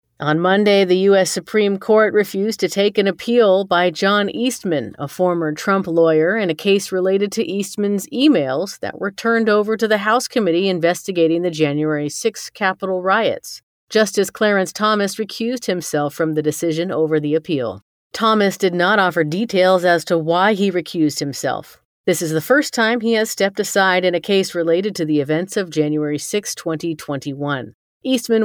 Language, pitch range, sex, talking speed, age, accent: English, 165-205 Hz, female, 175 wpm, 40-59, American